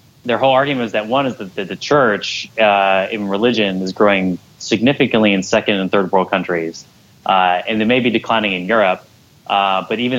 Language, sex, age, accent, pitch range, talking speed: English, male, 20-39, American, 95-115 Hz, 195 wpm